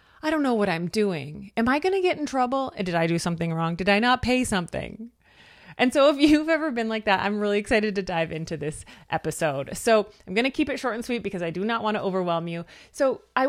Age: 30-49